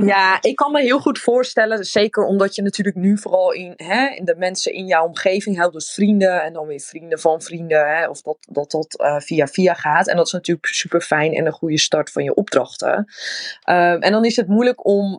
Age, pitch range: 20-39, 160-205 Hz